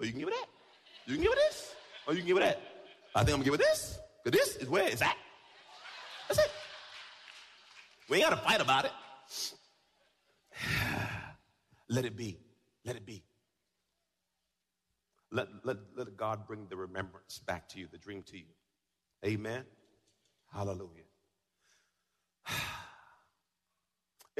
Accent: American